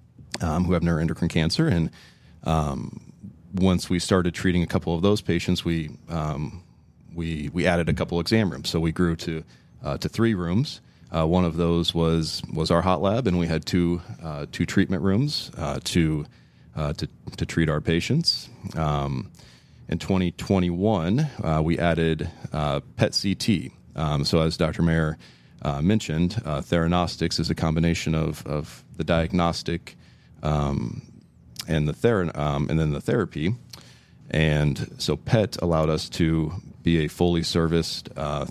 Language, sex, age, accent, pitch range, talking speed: English, male, 30-49, American, 80-90 Hz, 160 wpm